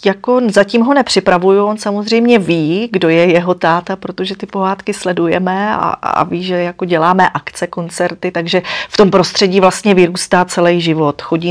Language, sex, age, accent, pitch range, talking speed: Czech, female, 30-49, native, 160-185 Hz, 165 wpm